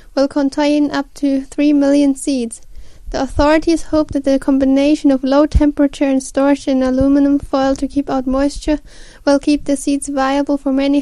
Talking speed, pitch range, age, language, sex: 175 wpm, 265-290 Hz, 10-29, English, female